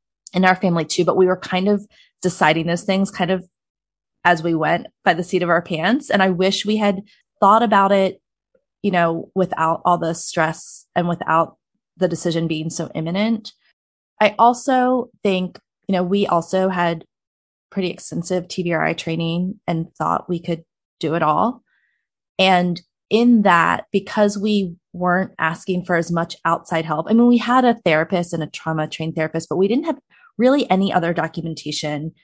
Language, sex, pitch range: English, female, 165-210 Hz